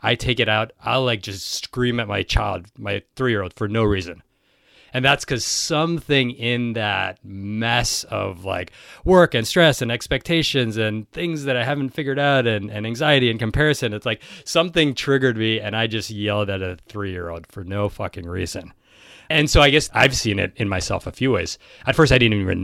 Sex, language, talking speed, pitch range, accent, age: male, English, 195 wpm, 100-130 Hz, American, 30-49